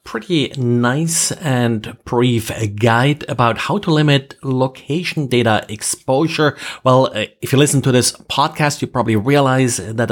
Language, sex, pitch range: English, male, 110-135 Hz